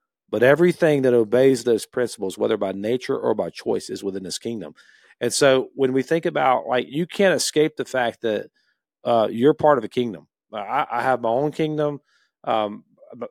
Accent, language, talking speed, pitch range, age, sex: American, English, 195 wpm, 110-145 Hz, 40-59, male